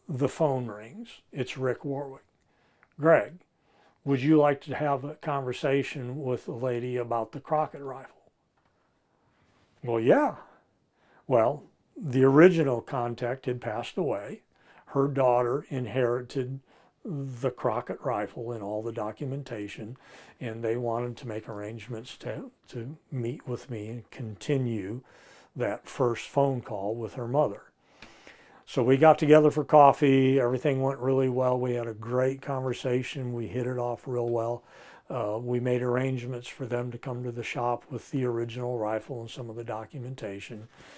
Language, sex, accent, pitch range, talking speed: English, male, American, 115-135 Hz, 150 wpm